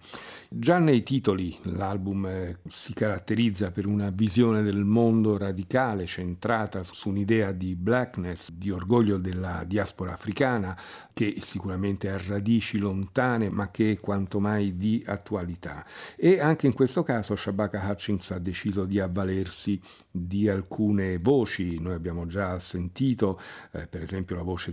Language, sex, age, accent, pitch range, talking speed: Italian, male, 50-69, native, 90-110 Hz, 140 wpm